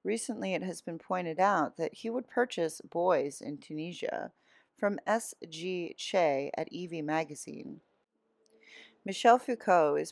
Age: 30-49